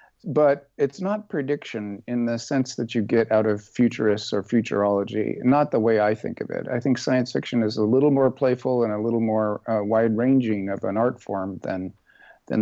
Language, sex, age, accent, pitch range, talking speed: English, male, 50-69, American, 110-135 Hz, 205 wpm